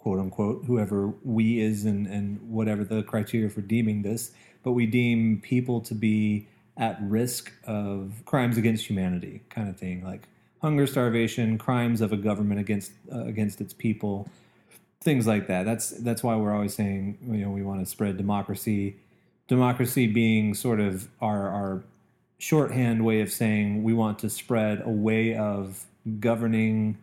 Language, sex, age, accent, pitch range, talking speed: English, male, 30-49, American, 100-120 Hz, 165 wpm